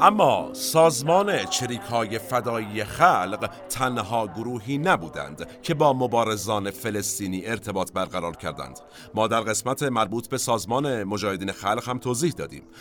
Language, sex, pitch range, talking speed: Persian, male, 95-125 Hz, 125 wpm